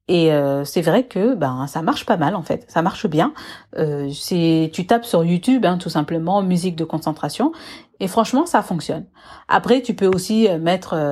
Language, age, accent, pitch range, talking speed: French, 40-59, French, 160-230 Hz, 195 wpm